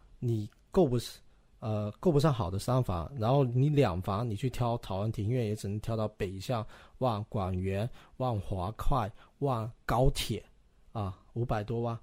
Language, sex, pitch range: Chinese, male, 105-135 Hz